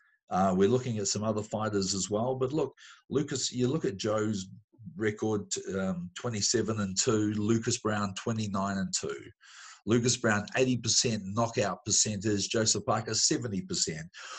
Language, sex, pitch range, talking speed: English, male, 100-115 Hz, 150 wpm